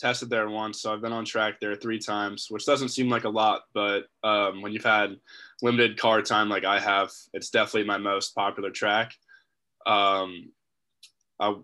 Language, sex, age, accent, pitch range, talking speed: English, male, 20-39, American, 100-115 Hz, 185 wpm